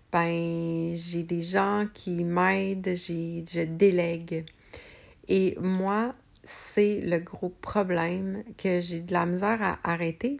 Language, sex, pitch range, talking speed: French, female, 170-210 Hz, 125 wpm